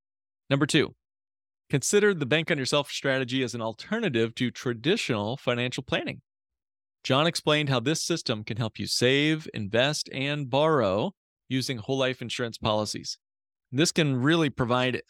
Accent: American